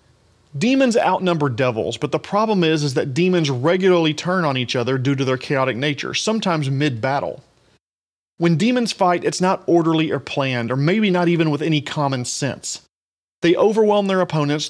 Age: 30-49